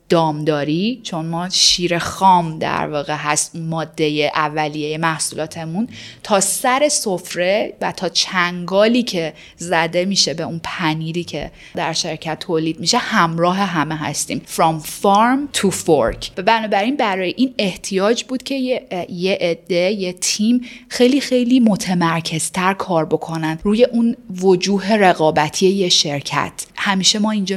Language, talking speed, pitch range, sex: Persian, 135 wpm, 165-210 Hz, female